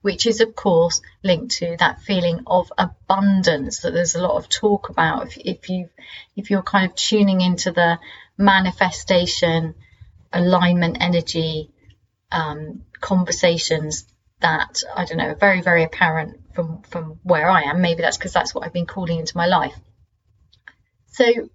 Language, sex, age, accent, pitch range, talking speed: English, female, 30-49, British, 170-215 Hz, 155 wpm